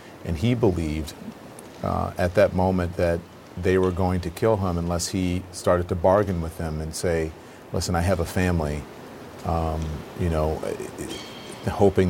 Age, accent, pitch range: 40-59, American, 85-100 Hz